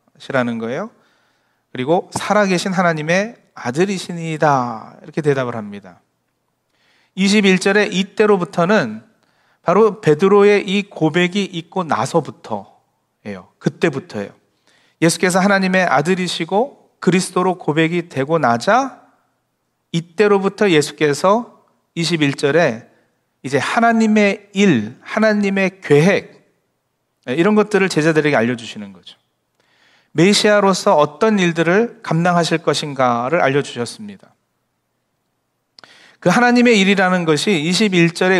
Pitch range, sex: 145-200 Hz, male